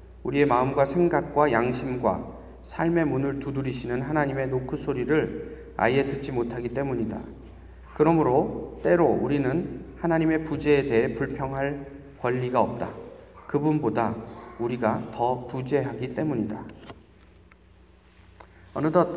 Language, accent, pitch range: Korean, native, 110-140 Hz